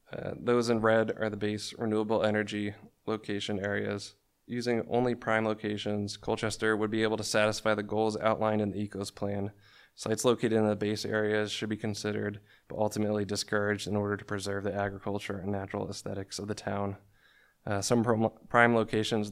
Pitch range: 105-110 Hz